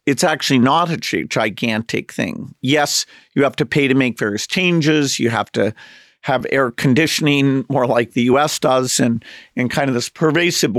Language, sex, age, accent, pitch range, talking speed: English, male, 50-69, American, 125-150 Hz, 180 wpm